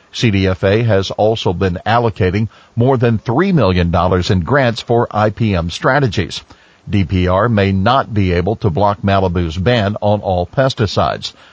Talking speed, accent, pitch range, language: 135 wpm, American, 95-125 Hz, English